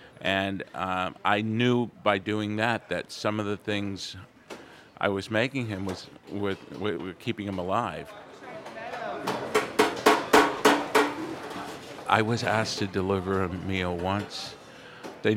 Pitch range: 95-115 Hz